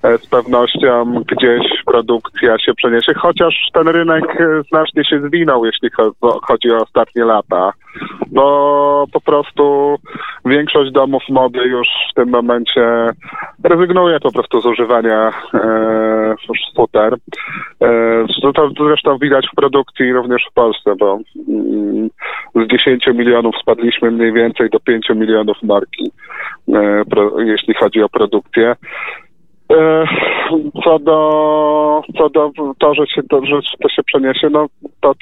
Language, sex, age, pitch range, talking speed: Polish, male, 20-39, 120-150 Hz, 120 wpm